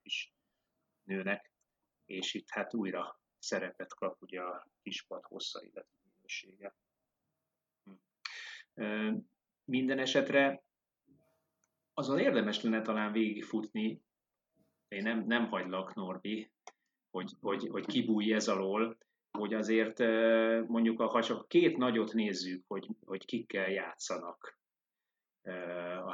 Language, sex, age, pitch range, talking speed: Hungarian, male, 30-49, 100-115 Hz, 105 wpm